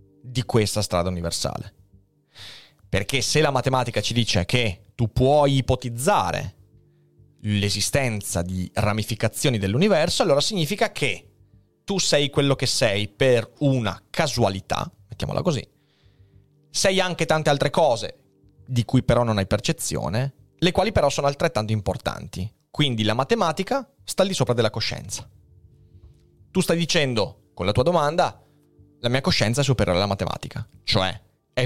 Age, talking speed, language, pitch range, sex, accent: 30-49, 140 wpm, Italian, 100-145 Hz, male, native